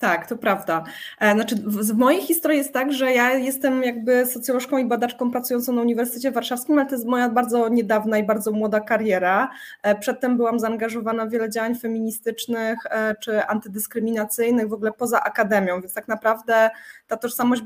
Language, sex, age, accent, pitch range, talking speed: Polish, female, 20-39, native, 220-265 Hz, 165 wpm